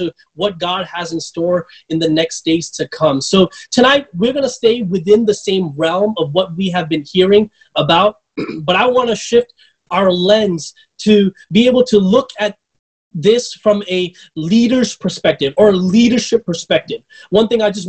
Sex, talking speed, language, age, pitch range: male, 180 wpm, English, 20-39, 160-205 Hz